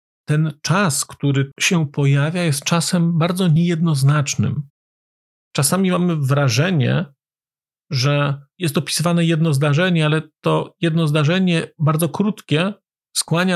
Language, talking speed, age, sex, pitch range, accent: Polish, 105 wpm, 40-59, male, 135-175 Hz, native